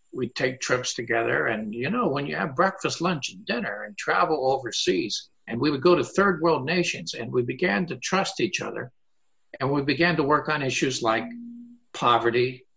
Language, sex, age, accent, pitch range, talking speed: English, male, 60-79, American, 120-165 Hz, 195 wpm